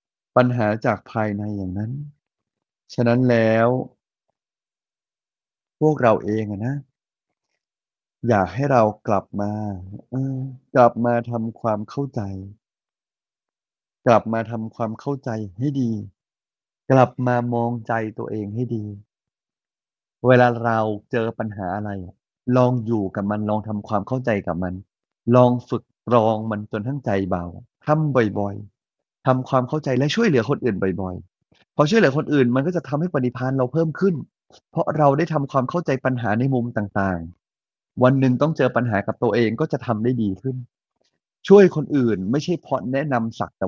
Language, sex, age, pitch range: Thai, male, 30-49, 105-130 Hz